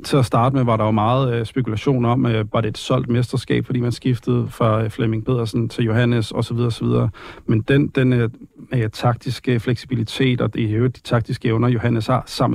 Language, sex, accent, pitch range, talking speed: Danish, male, native, 115-130 Hz, 205 wpm